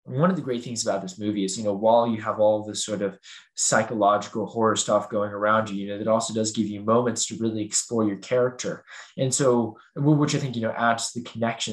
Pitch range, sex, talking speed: 100-115 Hz, male, 240 wpm